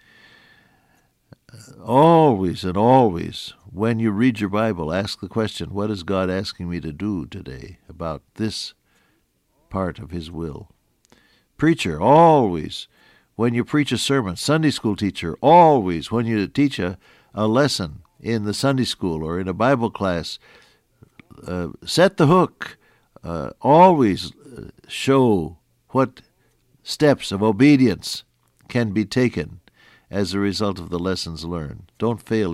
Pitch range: 85-120 Hz